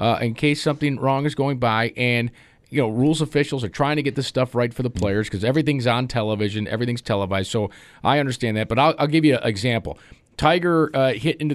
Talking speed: 230 wpm